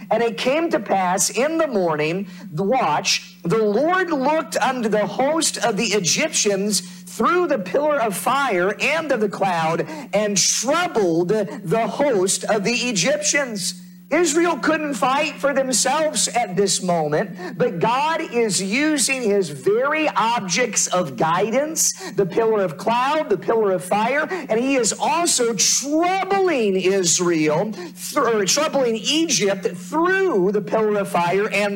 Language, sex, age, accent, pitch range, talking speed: English, male, 50-69, American, 185-245 Hz, 140 wpm